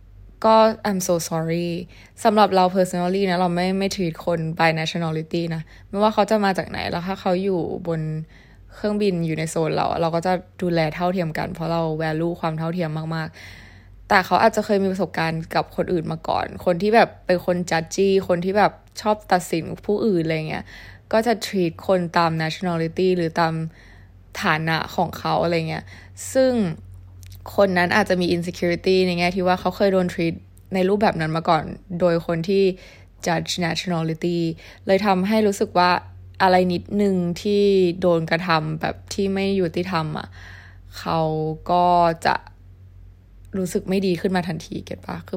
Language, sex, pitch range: Thai, female, 160-190 Hz